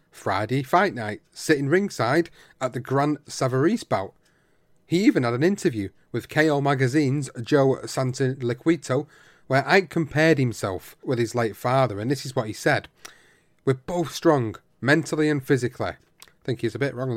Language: English